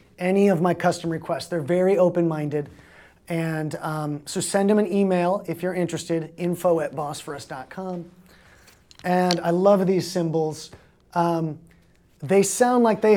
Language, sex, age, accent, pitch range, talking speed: English, male, 30-49, American, 165-190 Hz, 135 wpm